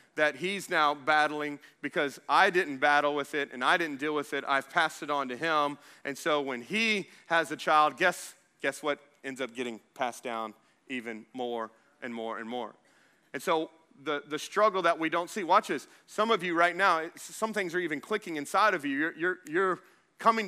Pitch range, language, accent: 150-205 Hz, English, American